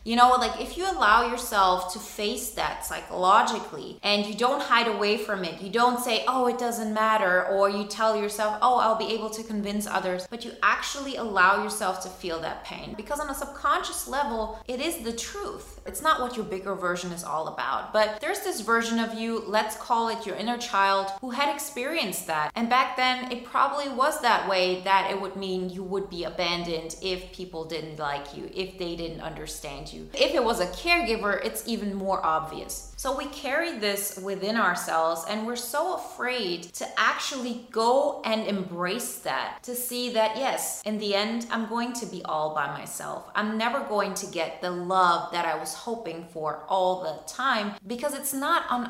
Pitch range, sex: 185-245 Hz, female